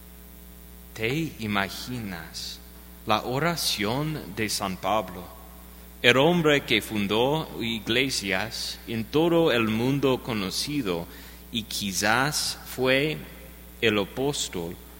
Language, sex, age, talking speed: English, male, 30-49, 90 wpm